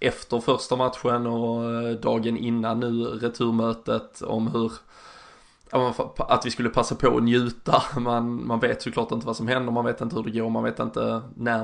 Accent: native